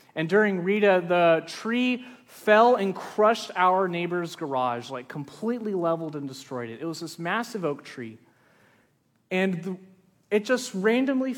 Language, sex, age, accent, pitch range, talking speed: English, male, 30-49, American, 180-225 Hz, 140 wpm